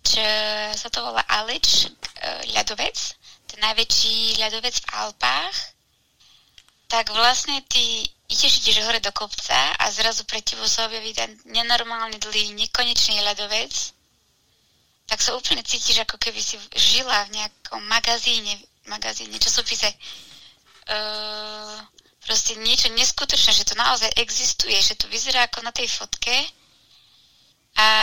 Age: 20-39